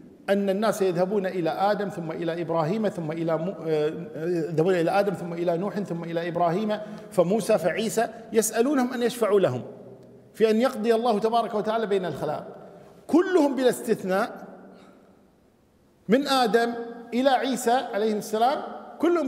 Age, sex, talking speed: 50-69, male, 130 wpm